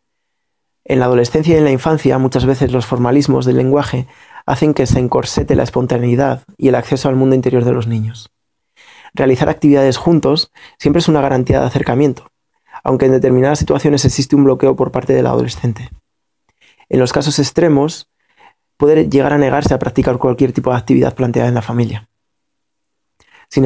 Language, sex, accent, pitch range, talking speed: Spanish, male, Spanish, 125-145 Hz, 170 wpm